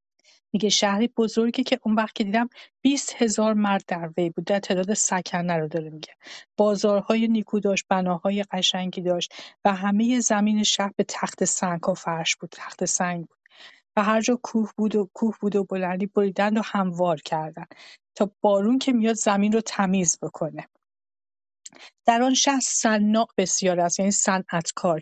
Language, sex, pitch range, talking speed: Persian, female, 180-225 Hz, 165 wpm